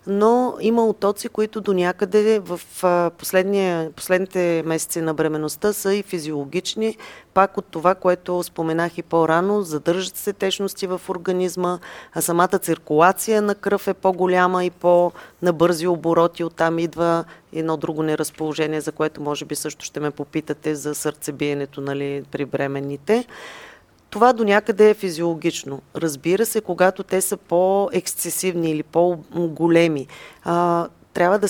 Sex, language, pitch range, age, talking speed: female, Bulgarian, 160-190 Hz, 30-49, 135 wpm